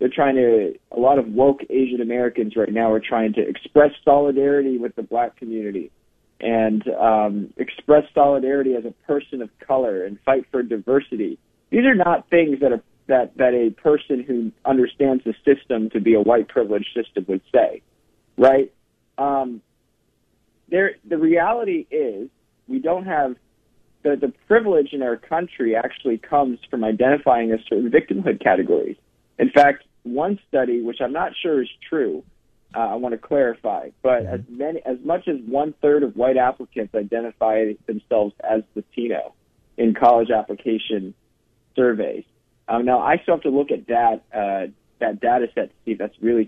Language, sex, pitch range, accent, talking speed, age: English, male, 115-145 Hz, American, 170 wpm, 40-59